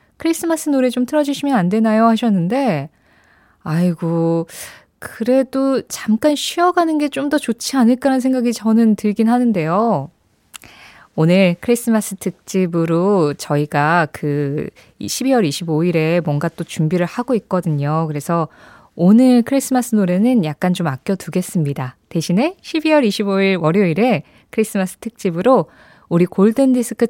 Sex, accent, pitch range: female, native, 175-255 Hz